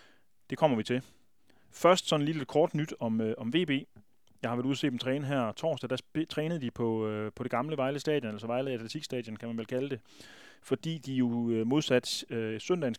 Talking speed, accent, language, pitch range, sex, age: 210 wpm, native, Danish, 115-140 Hz, male, 30-49